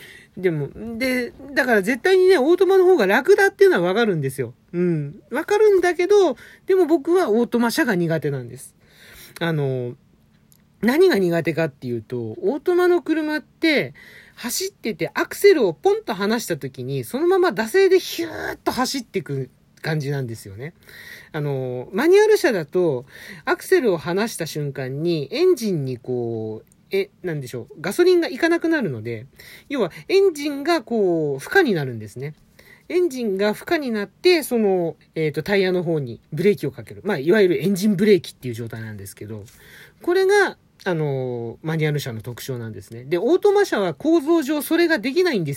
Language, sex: Japanese, male